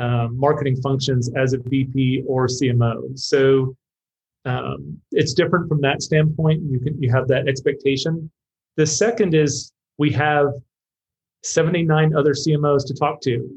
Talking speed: 140 wpm